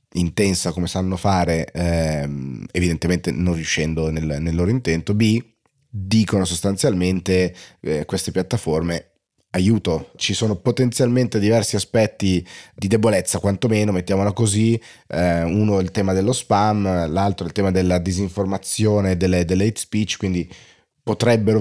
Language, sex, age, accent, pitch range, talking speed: Italian, male, 30-49, native, 90-105 Hz, 130 wpm